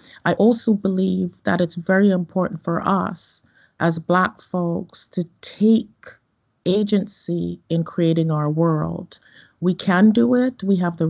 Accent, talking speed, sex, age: American, 140 wpm, female, 40-59